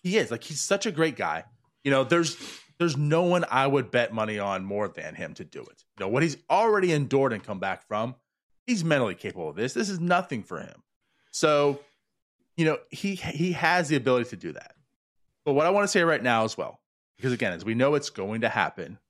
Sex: male